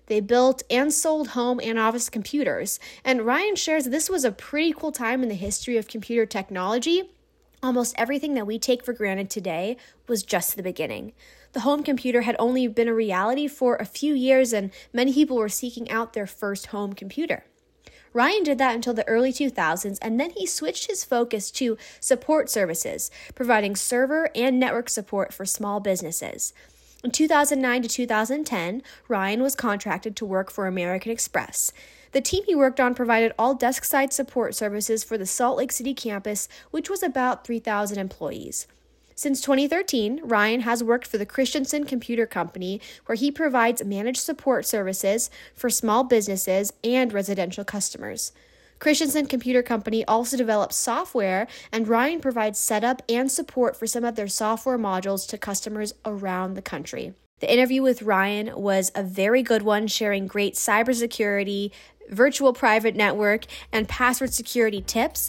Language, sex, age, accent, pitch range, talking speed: English, female, 10-29, American, 205-260 Hz, 160 wpm